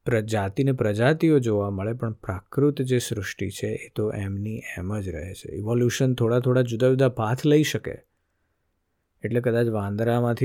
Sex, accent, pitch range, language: male, native, 105-130 Hz, Gujarati